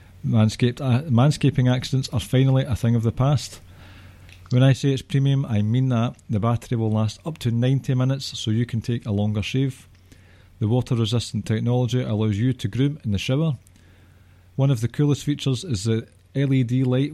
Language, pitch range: English, 105-130 Hz